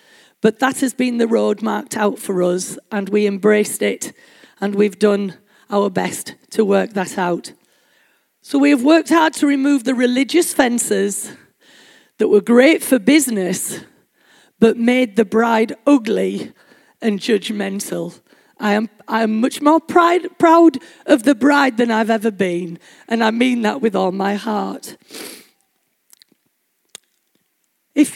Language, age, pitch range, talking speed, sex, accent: English, 40-59, 200-270 Hz, 145 wpm, female, British